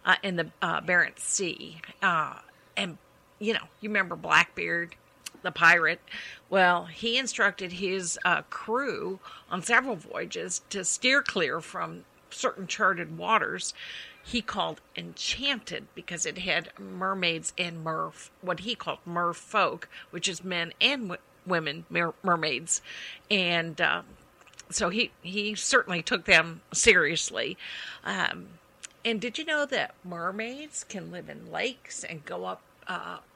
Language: English